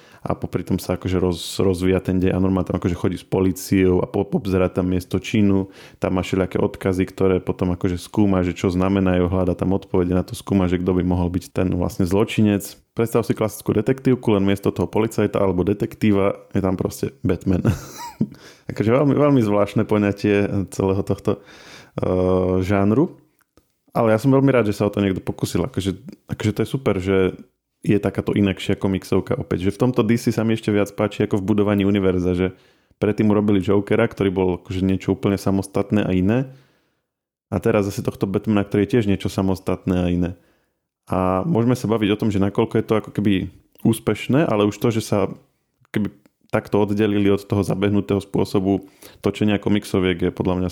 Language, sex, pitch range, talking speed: Slovak, male, 95-105 Hz, 185 wpm